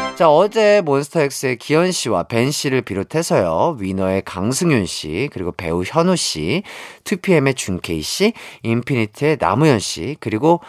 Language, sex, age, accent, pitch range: Korean, male, 30-49, native, 115-195 Hz